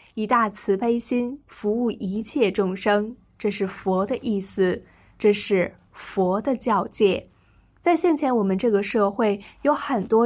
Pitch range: 200-255 Hz